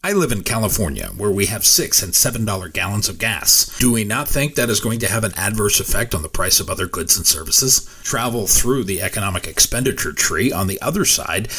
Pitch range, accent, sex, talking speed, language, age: 90-125 Hz, American, male, 225 wpm, English, 40-59